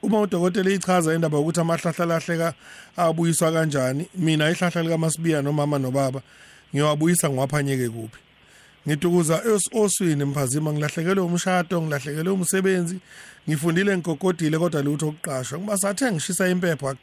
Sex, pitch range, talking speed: male, 140-165 Hz, 175 wpm